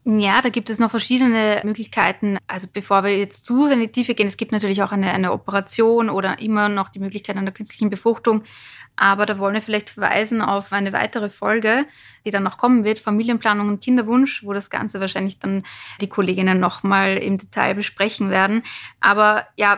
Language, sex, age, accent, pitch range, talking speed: German, female, 20-39, German, 195-220 Hz, 190 wpm